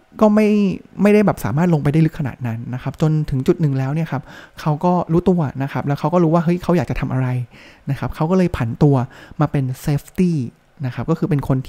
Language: Thai